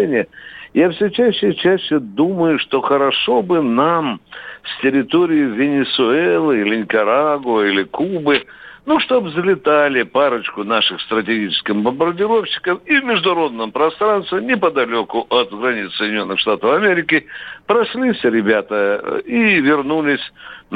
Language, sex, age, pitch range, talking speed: Russian, male, 60-79, 125-205 Hz, 110 wpm